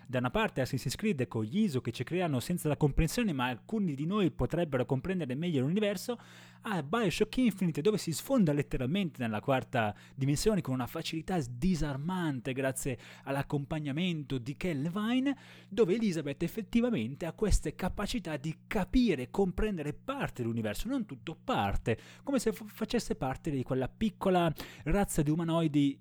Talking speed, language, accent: 155 wpm, Italian, native